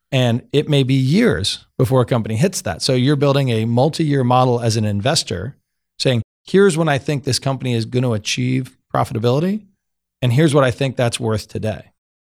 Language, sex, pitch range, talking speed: English, male, 110-130 Hz, 190 wpm